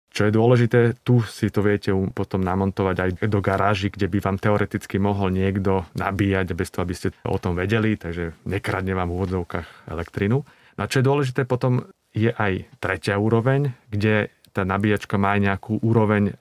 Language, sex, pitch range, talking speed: Slovak, male, 95-110 Hz, 175 wpm